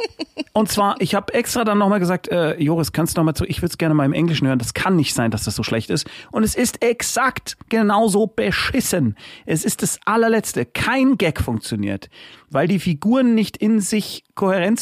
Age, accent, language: 40-59, German, German